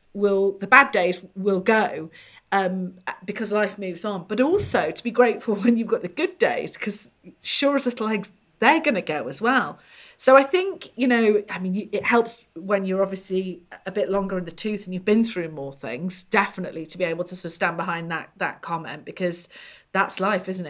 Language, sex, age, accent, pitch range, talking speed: English, female, 40-59, British, 170-210 Hz, 210 wpm